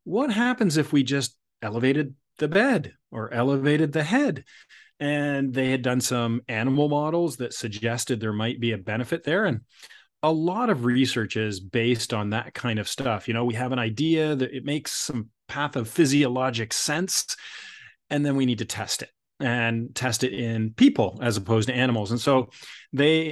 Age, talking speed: 30-49, 180 wpm